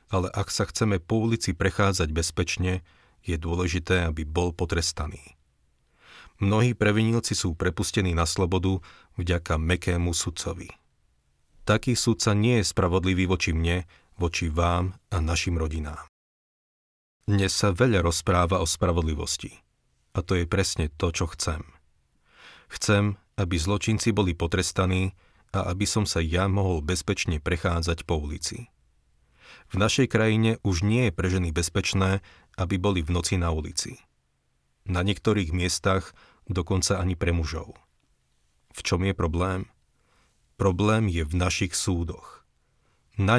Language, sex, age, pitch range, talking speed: Slovak, male, 40-59, 85-100 Hz, 130 wpm